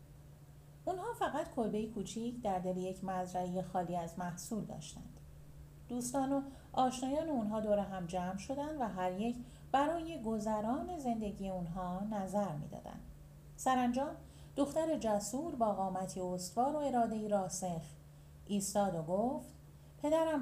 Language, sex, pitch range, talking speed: Persian, female, 185-260 Hz, 130 wpm